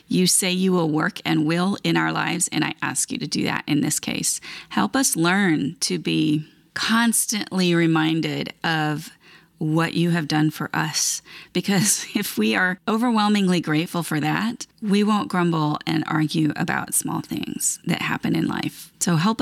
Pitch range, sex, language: 155-195 Hz, female, English